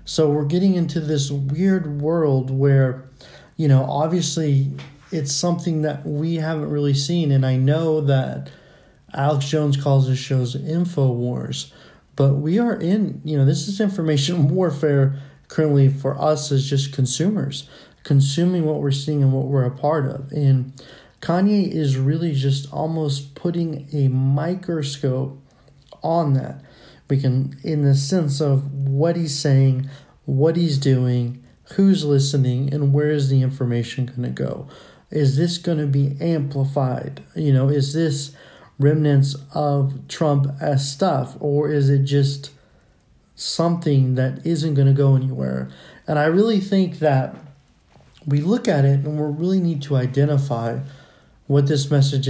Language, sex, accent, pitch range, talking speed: English, male, American, 135-155 Hz, 150 wpm